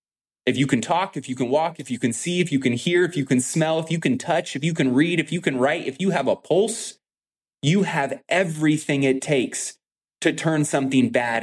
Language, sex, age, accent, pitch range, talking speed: English, male, 20-39, American, 115-145 Hz, 240 wpm